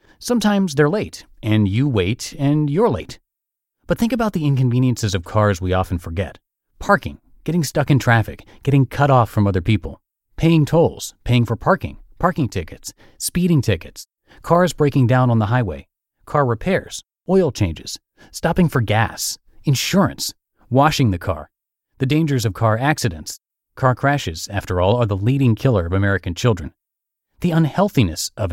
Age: 30-49